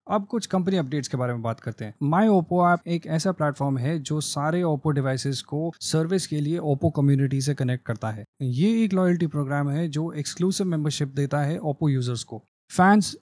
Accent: native